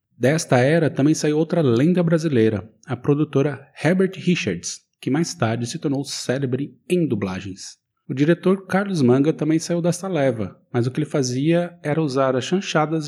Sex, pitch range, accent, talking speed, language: male, 115-160 Hz, Brazilian, 165 wpm, Portuguese